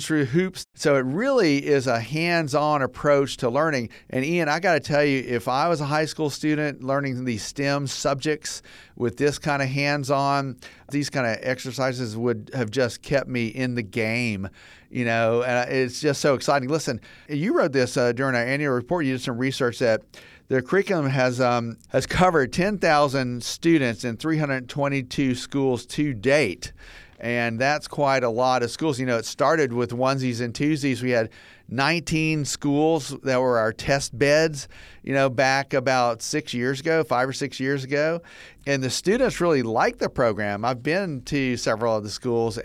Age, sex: 50-69, male